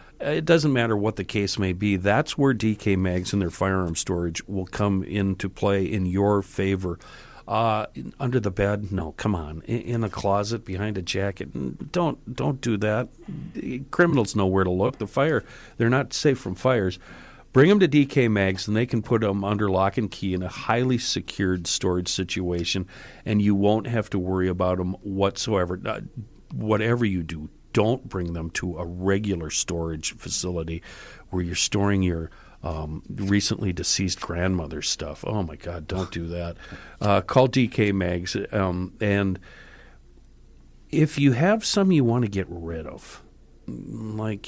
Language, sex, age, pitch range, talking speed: English, male, 50-69, 90-110 Hz, 170 wpm